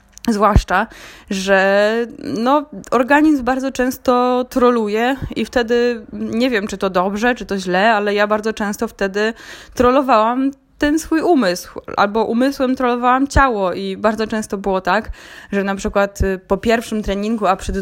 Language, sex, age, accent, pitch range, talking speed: Polish, female, 20-39, native, 195-250 Hz, 145 wpm